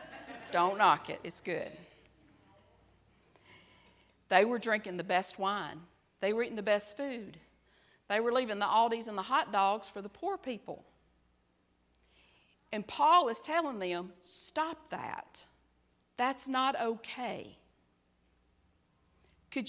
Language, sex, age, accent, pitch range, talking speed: English, female, 40-59, American, 190-255 Hz, 125 wpm